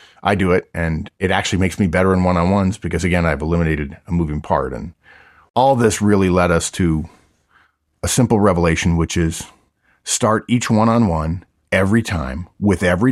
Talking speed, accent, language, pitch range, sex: 170 wpm, American, English, 85-105 Hz, male